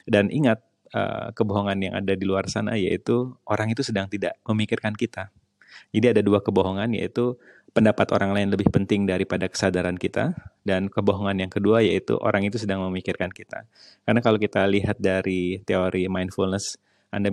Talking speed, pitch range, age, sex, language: 160 wpm, 95-110 Hz, 20-39, male, Indonesian